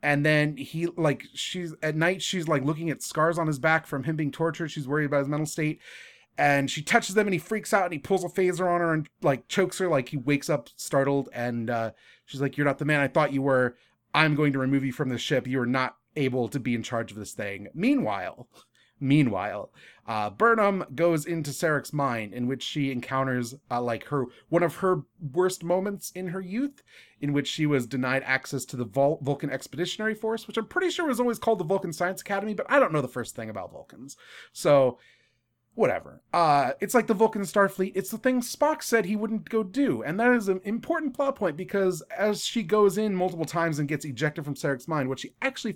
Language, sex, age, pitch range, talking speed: English, male, 30-49, 135-185 Hz, 230 wpm